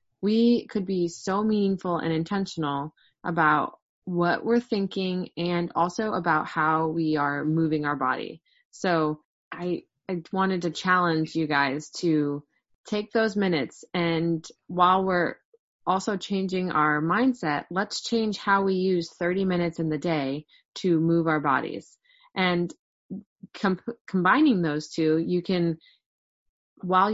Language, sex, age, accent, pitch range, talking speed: English, female, 20-39, American, 165-200 Hz, 135 wpm